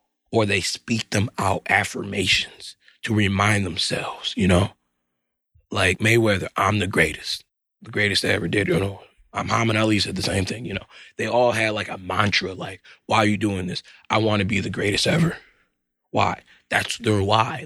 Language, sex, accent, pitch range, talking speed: English, male, American, 100-110 Hz, 190 wpm